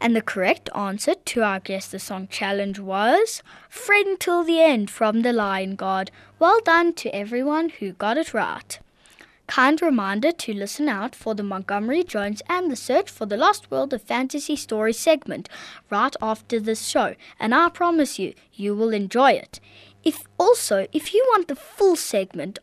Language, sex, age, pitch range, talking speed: English, female, 20-39, 210-305 Hz, 180 wpm